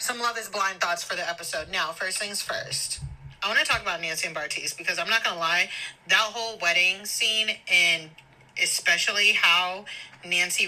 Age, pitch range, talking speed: 30-49, 185-265 Hz, 190 wpm